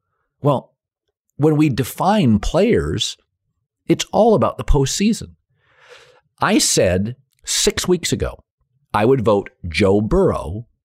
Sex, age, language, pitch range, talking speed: male, 50-69, English, 95-135 Hz, 110 wpm